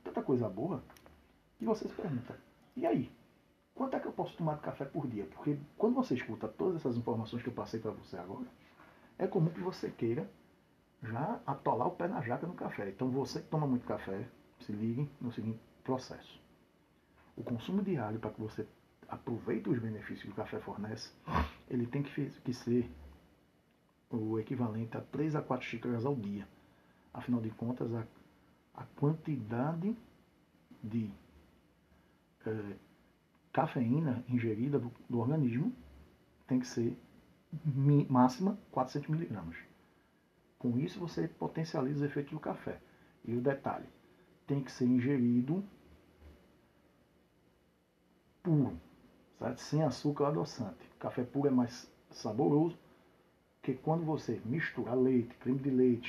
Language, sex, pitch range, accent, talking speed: Portuguese, male, 110-145 Hz, Brazilian, 140 wpm